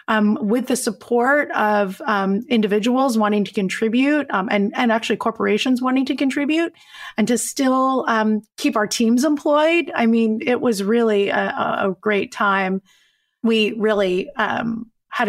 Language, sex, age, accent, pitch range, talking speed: English, female, 30-49, American, 200-240 Hz, 155 wpm